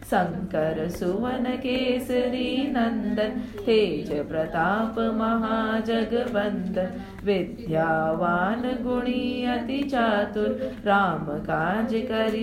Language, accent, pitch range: English, Indian, 200-245 Hz